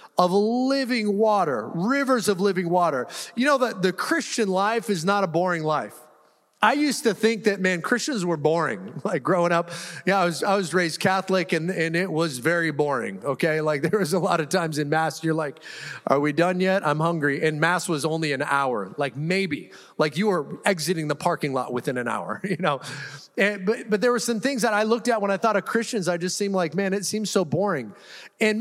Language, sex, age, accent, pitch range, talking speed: English, male, 30-49, American, 180-235 Hz, 225 wpm